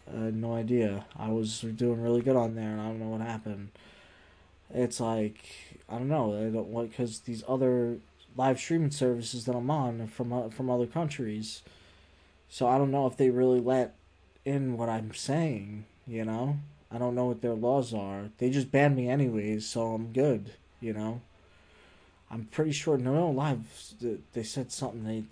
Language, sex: English, male